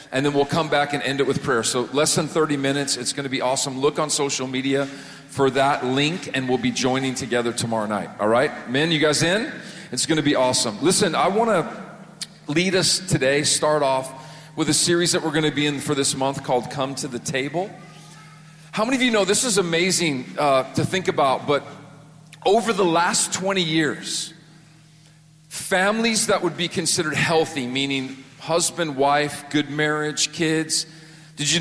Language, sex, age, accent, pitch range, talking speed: English, male, 40-59, American, 145-175 Hz, 195 wpm